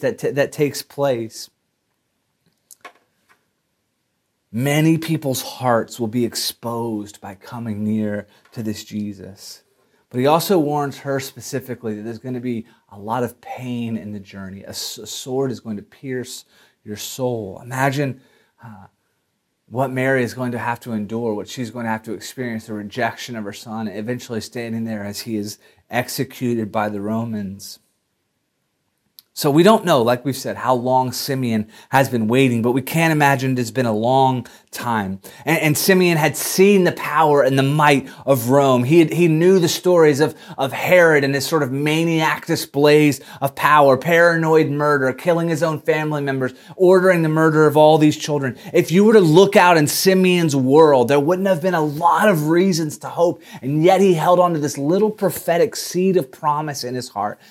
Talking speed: 180 wpm